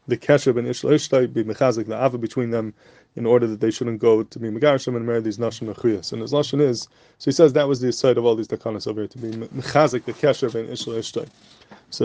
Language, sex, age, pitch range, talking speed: English, male, 20-39, 115-135 Hz, 255 wpm